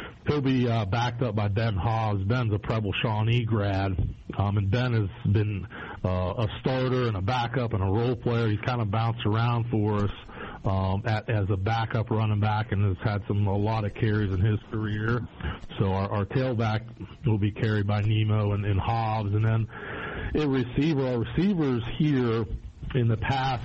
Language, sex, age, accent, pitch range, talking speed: English, male, 50-69, American, 105-120 Hz, 190 wpm